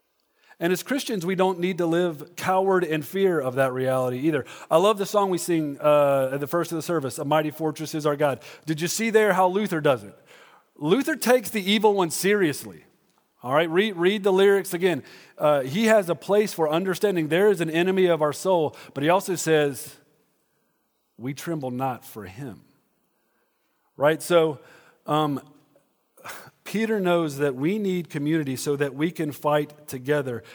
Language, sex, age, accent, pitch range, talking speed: English, male, 40-59, American, 140-190 Hz, 185 wpm